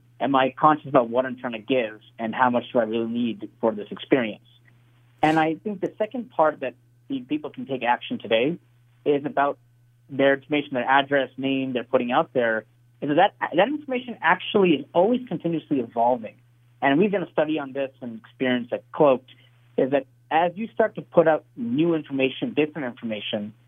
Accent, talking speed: American, 190 wpm